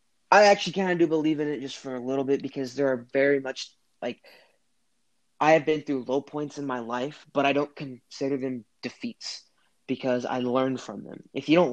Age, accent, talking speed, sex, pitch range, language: 20-39, American, 215 wpm, male, 120-140 Hz, English